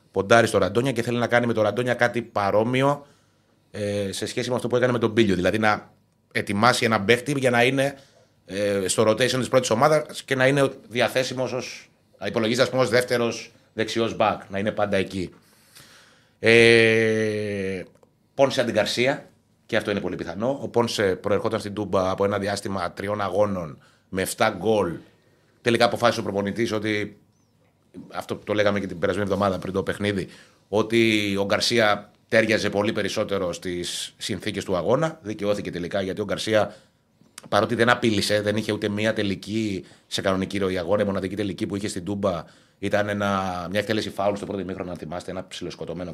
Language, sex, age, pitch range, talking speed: Greek, male, 30-49, 100-115 Hz, 165 wpm